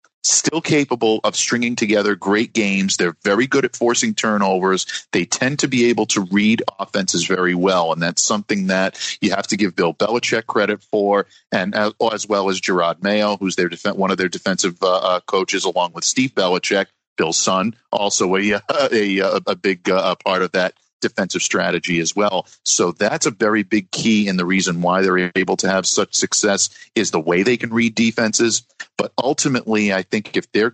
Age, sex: 50-69, male